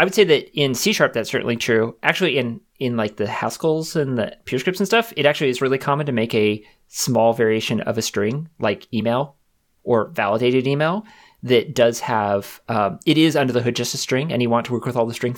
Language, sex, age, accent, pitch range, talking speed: English, male, 30-49, American, 115-155 Hz, 230 wpm